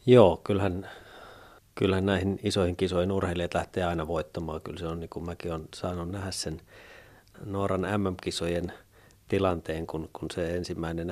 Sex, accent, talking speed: male, native, 145 wpm